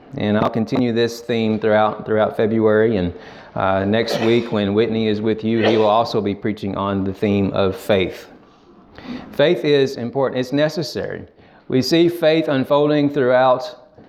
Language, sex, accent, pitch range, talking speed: Bengali, male, American, 115-145 Hz, 160 wpm